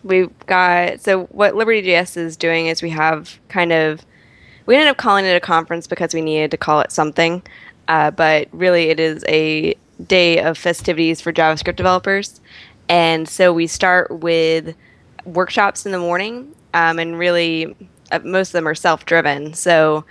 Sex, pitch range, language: female, 155-175 Hz, English